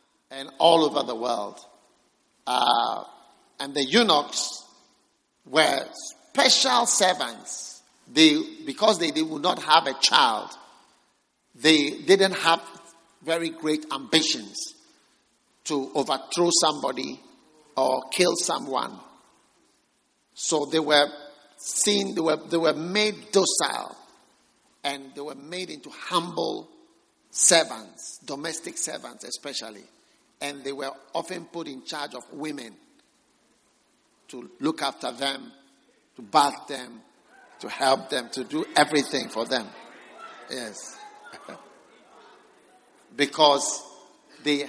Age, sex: 50-69, male